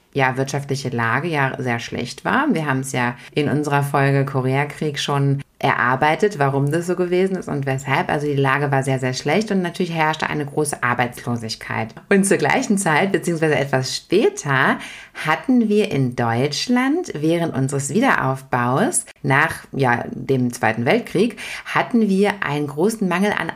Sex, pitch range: female, 130-195 Hz